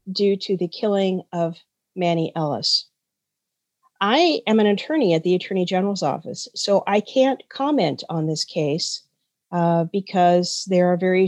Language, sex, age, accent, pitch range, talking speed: English, female, 50-69, American, 170-220 Hz, 150 wpm